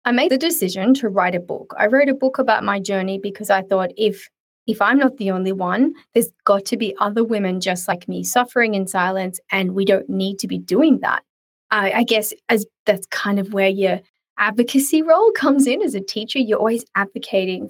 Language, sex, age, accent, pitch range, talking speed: English, female, 20-39, Australian, 195-250 Hz, 215 wpm